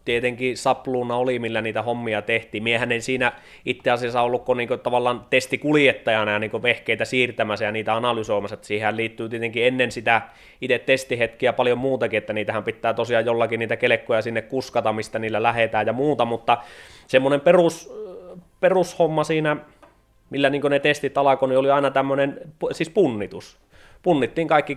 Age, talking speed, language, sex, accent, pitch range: 20-39, 155 wpm, Finnish, male, native, 110-135 Hz